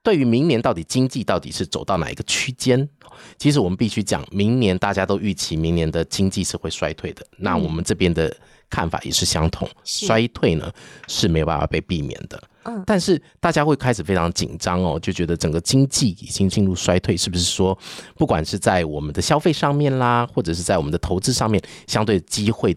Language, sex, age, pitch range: Chinese, male, 30-49, 85-125 Hz